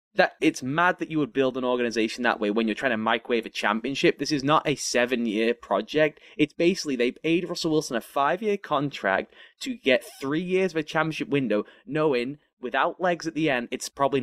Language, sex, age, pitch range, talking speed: English, male, 20-39, 125-170 Hz, 205 wpm